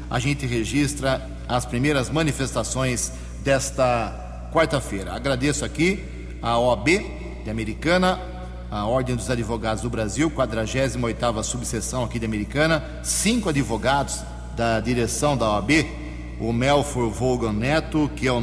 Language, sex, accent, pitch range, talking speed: Portuguese, male, Brazilian, 115-145 Hz, 125 wpm